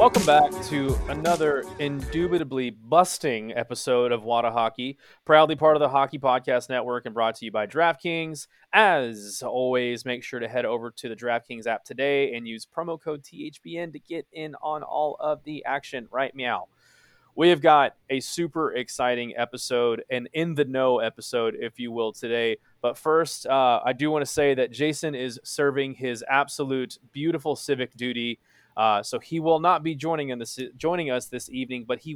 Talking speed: 180 wpm